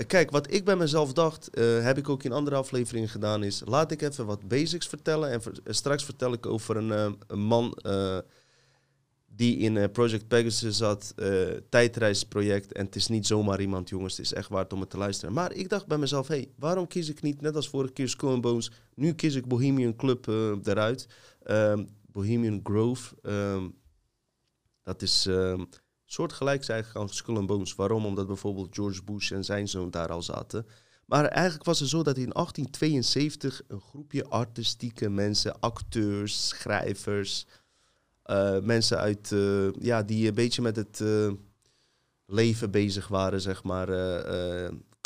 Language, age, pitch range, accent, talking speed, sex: Dutch, 30-49, 100-130 Hz, Dutch, 175 wpm, male